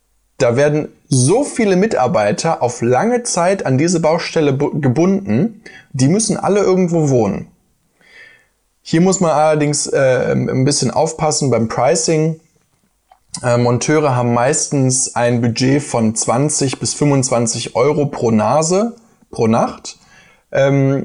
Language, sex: German, male